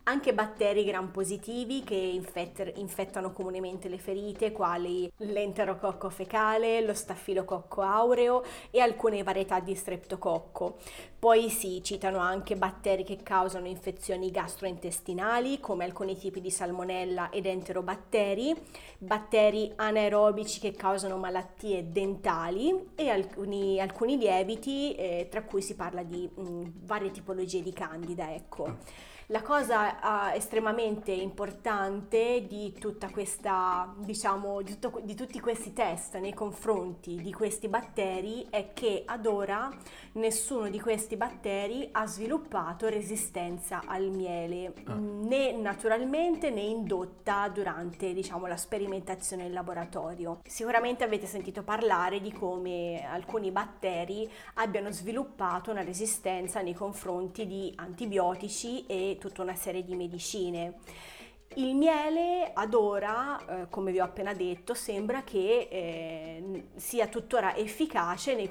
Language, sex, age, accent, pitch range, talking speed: Italian, female, 30-49, native, 185-220 Hz, 125 wpm